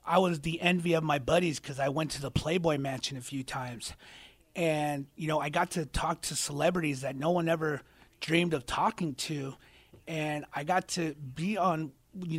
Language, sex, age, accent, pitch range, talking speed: English, male, 30-49, American, 140-170 Hz, 200 wpm